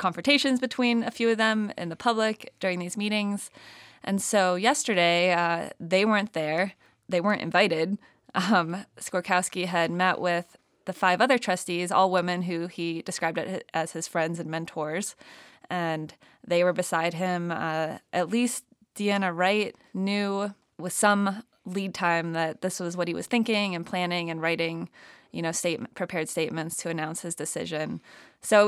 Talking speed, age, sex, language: 165 wpm, 20-39, female, English